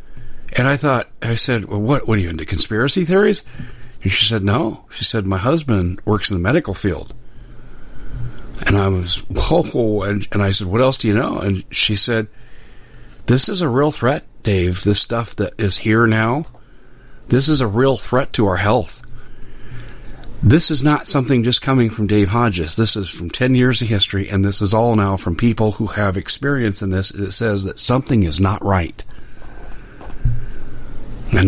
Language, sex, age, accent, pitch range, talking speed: English, male, 50-69, American, 95-120 Hz, 185 wpm